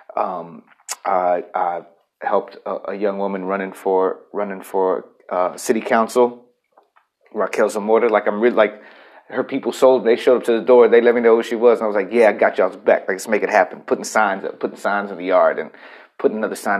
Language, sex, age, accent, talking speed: English, male, 30-49, American, 225 wpm